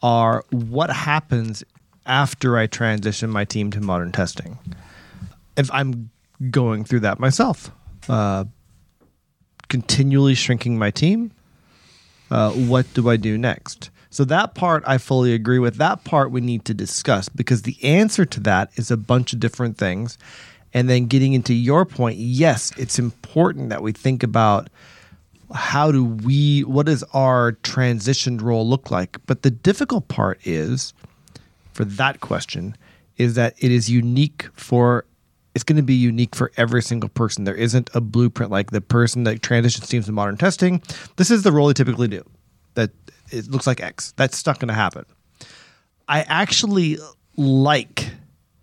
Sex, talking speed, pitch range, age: male, 160 wpm, 110-135 Hz, 30-49